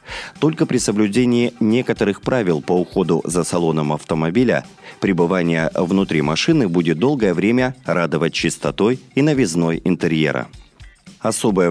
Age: 30-49